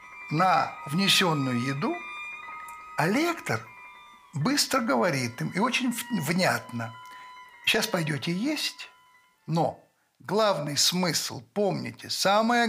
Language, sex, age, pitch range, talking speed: Russian, male, 60-79, 145-230 Hz, 90 wpm